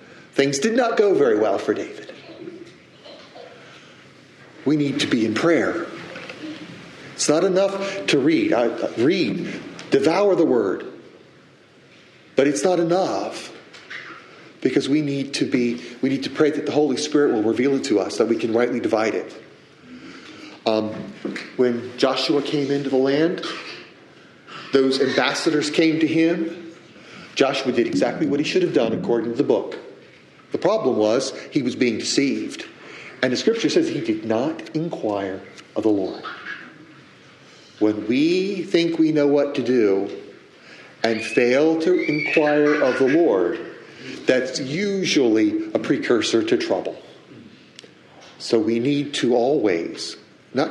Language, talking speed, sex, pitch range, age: English, 145 wpm, male, 125-195 Hz, 40-59